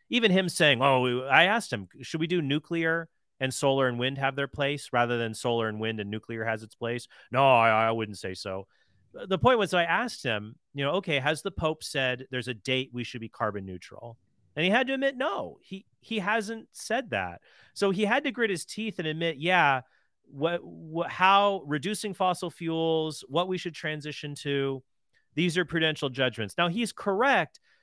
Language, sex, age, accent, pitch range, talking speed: English, male, 30-49, American, 115-165 Hz, 210 wpm